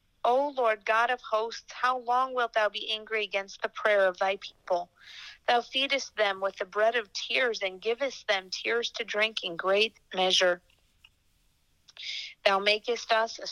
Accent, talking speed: American, 170 wpm